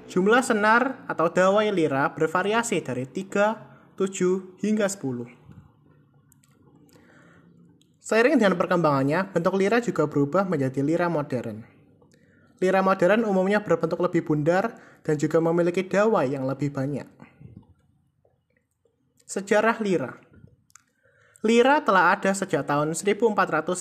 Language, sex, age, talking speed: Indonesian, male, 20-39, 105 wpm